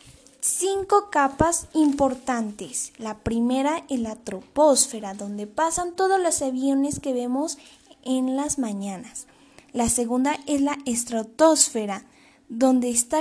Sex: female